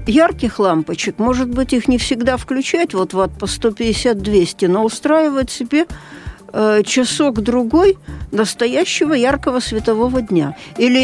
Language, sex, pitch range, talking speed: Russian, female, 220-280 Hz, 120 wpm